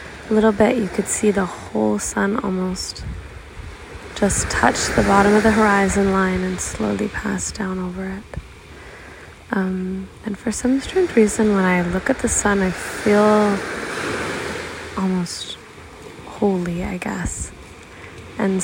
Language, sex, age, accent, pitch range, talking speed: English, female, 20-39, American, 180-205 Hz, 135 wpm